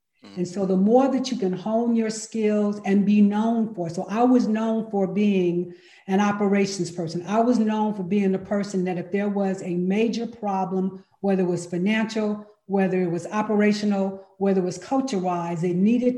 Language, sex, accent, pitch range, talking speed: English, female, American, 185-225 Hz, 195 wpm